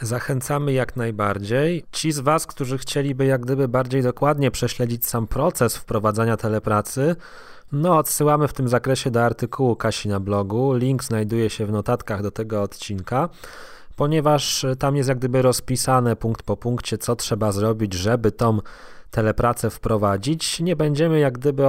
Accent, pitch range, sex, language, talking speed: native, 110-135 Hz, male, Polish, 150 wpm